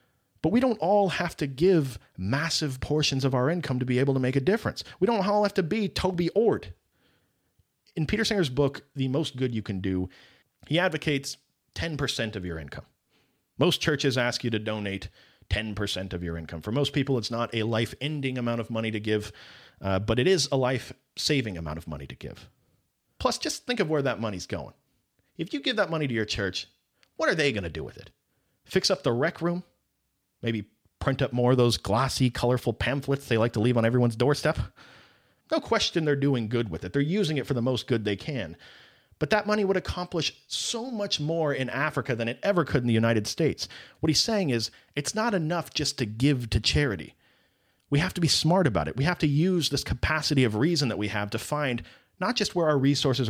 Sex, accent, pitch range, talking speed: male, American, 115-155 Hz, 215 wpm